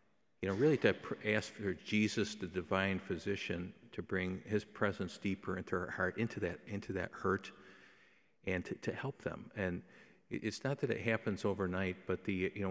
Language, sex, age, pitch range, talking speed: English, male, 50-69, 95-110 Hz, 185 wpm